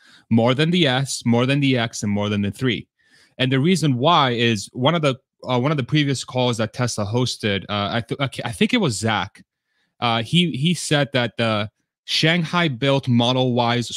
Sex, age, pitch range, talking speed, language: male, 30-49, 110-140 Hz, 210 wpm, English